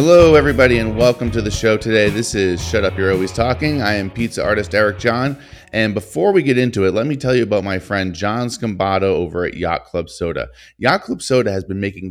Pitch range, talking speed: 95-125 Hz, 235 wpm